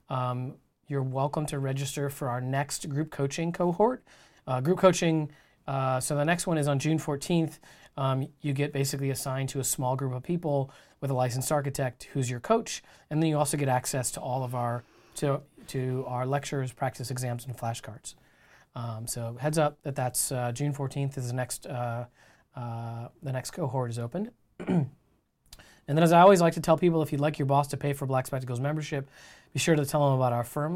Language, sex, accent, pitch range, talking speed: English, male, American, 130-155 Hz, 205 wpm